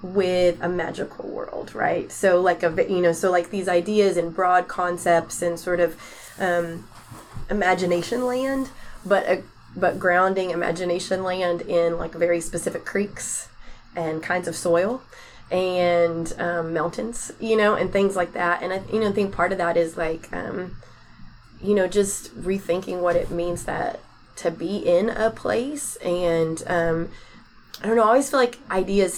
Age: 20-39